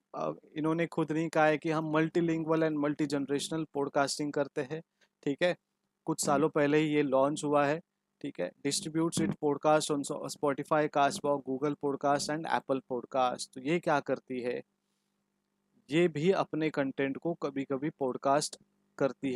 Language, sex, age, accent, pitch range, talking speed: Hindi, male, 30-49, native, 135-155 Hz, 160 wpm